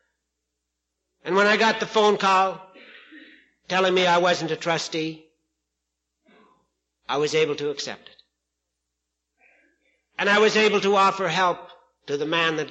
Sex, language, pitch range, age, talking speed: male, English, 155-235 Hz, 60-79, 140 wpm